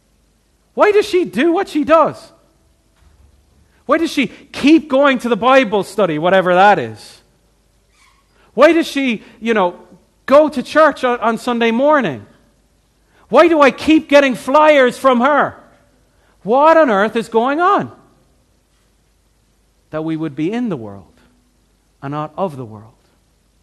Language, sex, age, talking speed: English, male, 40-59, 145 wpm